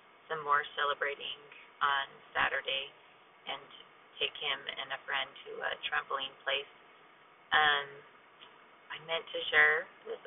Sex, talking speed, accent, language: female, 125 wpm, American, English